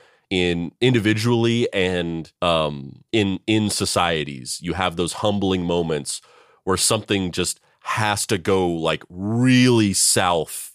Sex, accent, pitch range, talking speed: male, American, 85-105 Hz, 115 wpm